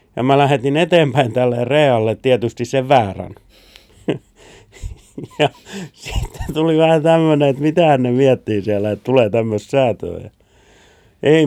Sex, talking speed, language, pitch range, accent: male, 125 wpm, Finnish, 100-130 Hz, native